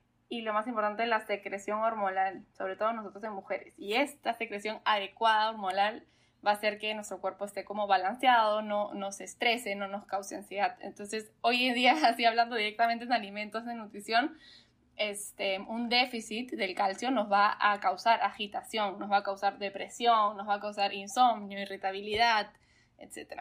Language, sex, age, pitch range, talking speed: Spanish, female, 10-29, 200-235 Hz, 170 wpm